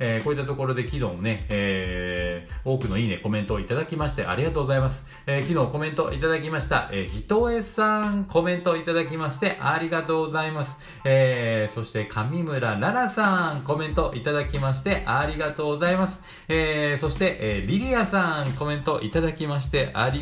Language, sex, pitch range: Japanese, male, 105-160 Hz